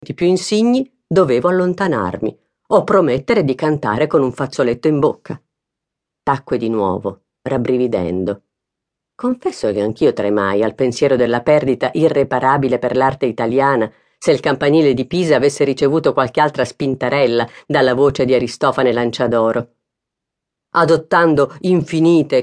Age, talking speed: 40-59, 125 wpm